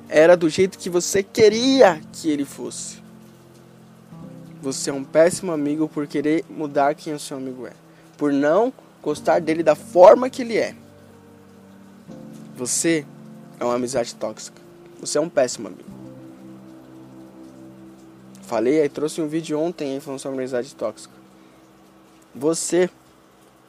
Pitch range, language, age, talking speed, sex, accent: 115-165 Hz, Portuguese, 20-39, 135 wpm, male, Brazilian